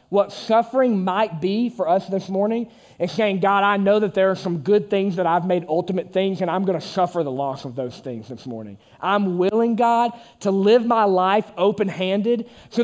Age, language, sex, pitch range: 20-39, English, male, 175-215 Hz